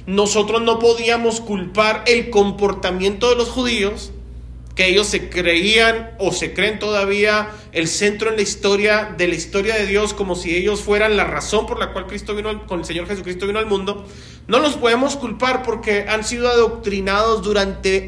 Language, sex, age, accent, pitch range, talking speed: Spanish, male, 40-59, Mexican, 200-240 Hz, 185 wpm